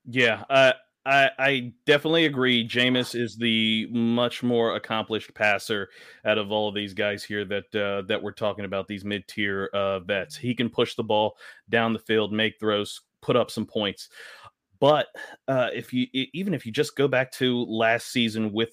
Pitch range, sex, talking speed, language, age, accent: 100-120 Hz, male, 190 wpm, English, 30-49, American